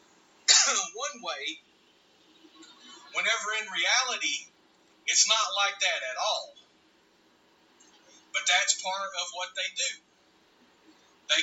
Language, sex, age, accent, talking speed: English, male, 40-59, American, 100 wpm